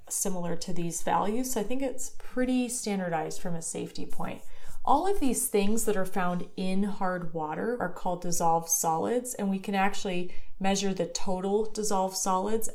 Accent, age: American, 30-49